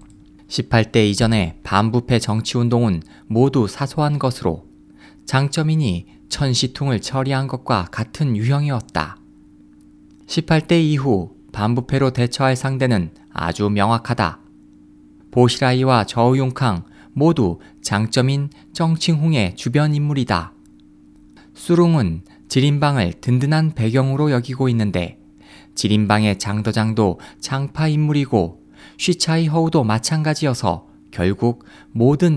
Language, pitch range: Korean, 85-140 Hz